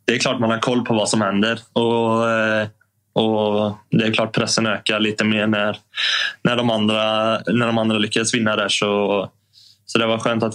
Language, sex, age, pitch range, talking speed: Swedish, male, 20-39, 105-115 Hz, 190 wpm